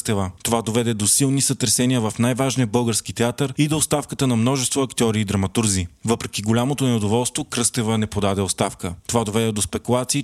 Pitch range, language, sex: 105-125 Hz, Bulgarian, male